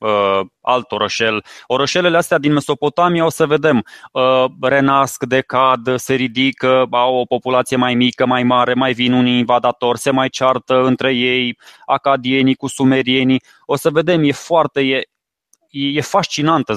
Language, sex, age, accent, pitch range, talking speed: Romanian, male, 20-39, native, 120-140 Hz, 145 wpm